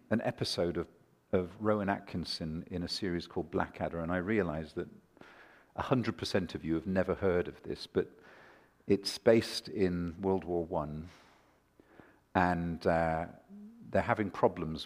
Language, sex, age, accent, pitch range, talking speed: English, male, 50-69, British, 85-110 Hz, 140 wpm